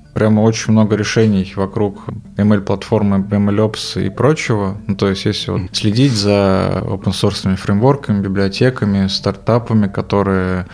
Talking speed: 125 wpm